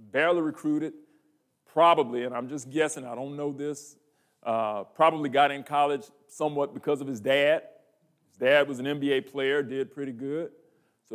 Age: 40-59